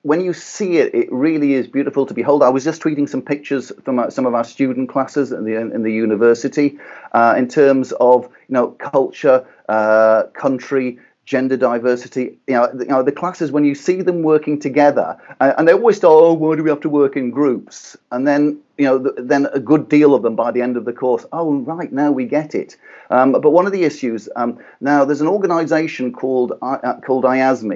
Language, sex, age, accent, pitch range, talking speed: English, male, 40-59, British, 120-150 Hz, 215 wpm